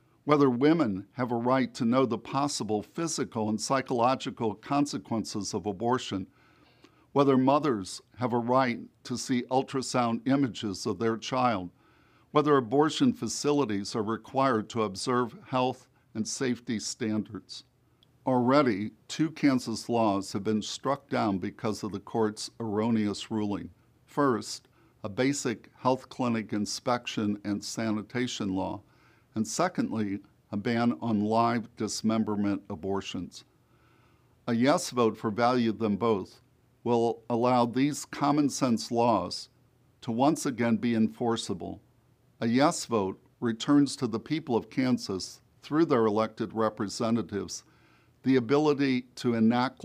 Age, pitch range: 60-79, 110-130 Hz